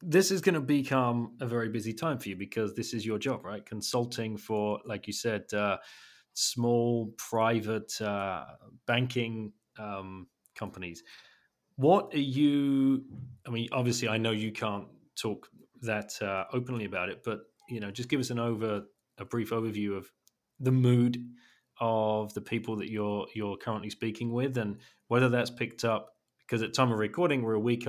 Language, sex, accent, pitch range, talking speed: English, male, British, 100-120 Hz, 175 wpm